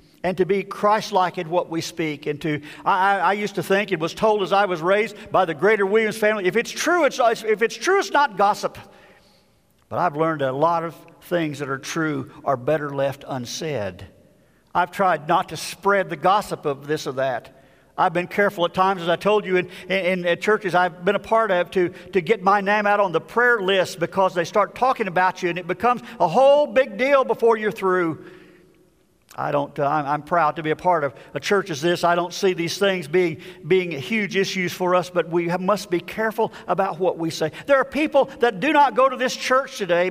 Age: 50-69